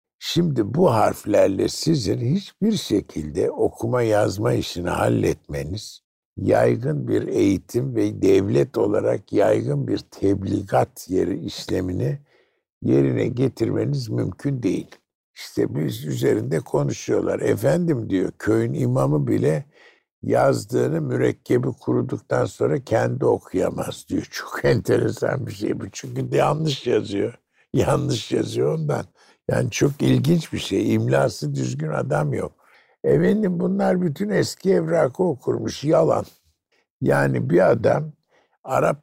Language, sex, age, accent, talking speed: Turkish, male, 60-79, native, 110 wpm